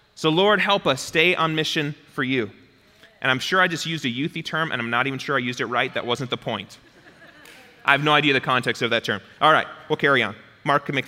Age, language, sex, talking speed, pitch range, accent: 30-49, English, male, 260 wpm, 165-240 Hz, American